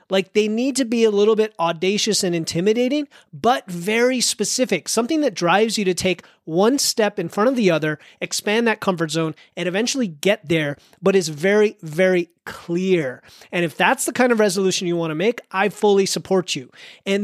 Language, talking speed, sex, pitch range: English, 195 wpm, male, 165-210 Hz